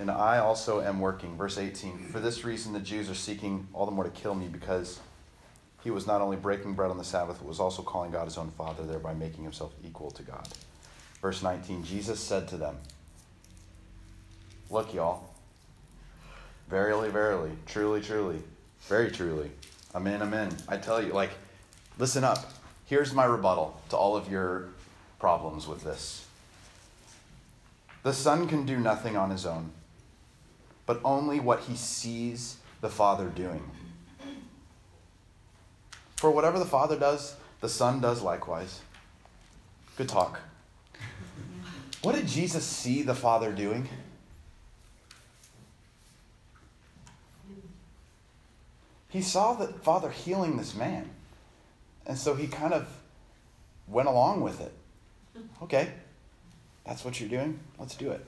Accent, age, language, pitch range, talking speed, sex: American, 30-49, English, 90-120 Hz, 140 wpm, male